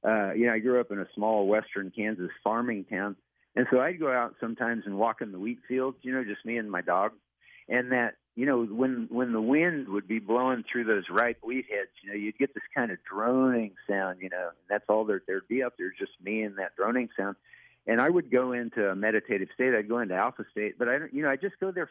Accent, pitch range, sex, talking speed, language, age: American, 105-135 Hz, male, 260 wpm, English, 50-69